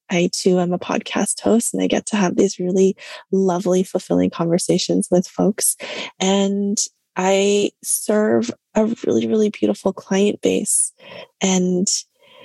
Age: 20-39